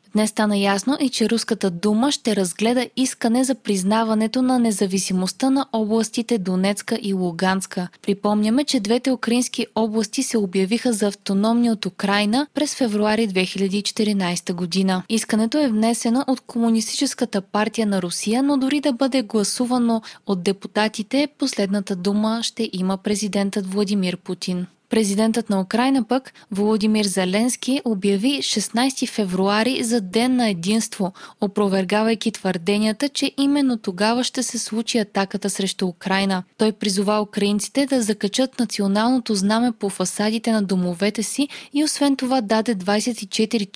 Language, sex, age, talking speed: Bulgarian, female, 20-39, 135 wpm